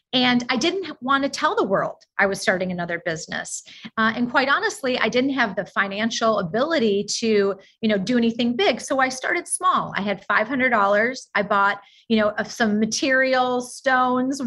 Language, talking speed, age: English, 185 wpm, 30-49